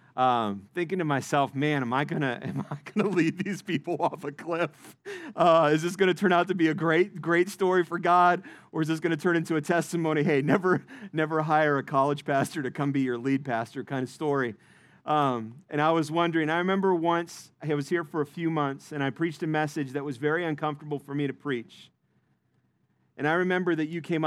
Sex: male